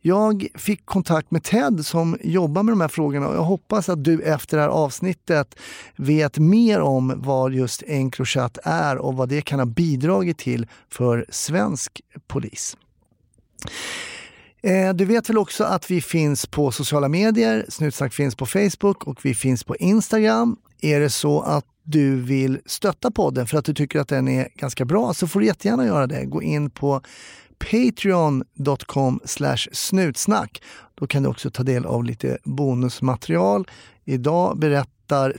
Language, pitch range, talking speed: Swedish, 125-175 Hz, 165 wpm